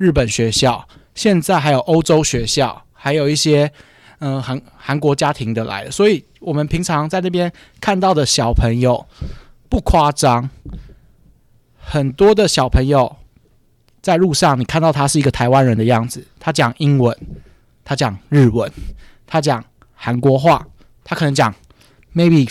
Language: Chinese